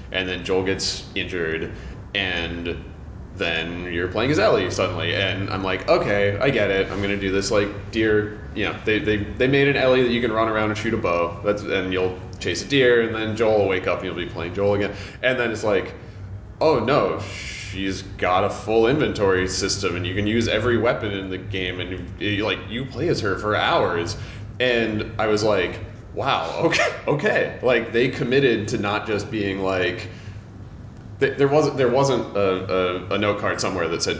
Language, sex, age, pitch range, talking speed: English, male, 20-39, 95-110 Hz, 205 wpm